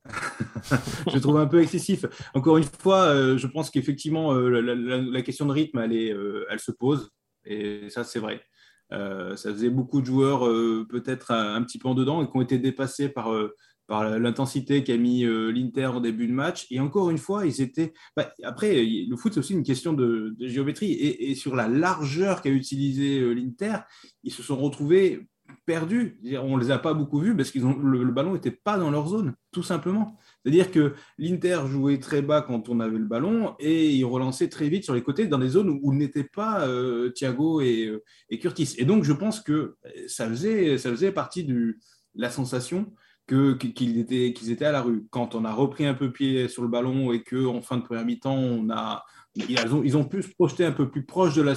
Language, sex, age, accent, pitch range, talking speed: French, male, 20-39, French, 120-155 Hz, 225 wpm